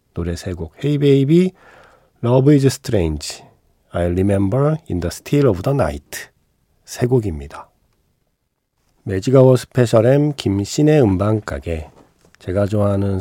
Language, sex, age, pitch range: Korean, male, 40-59, 95-140 Hz